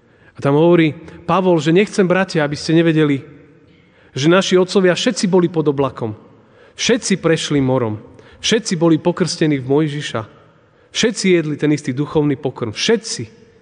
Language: Slovak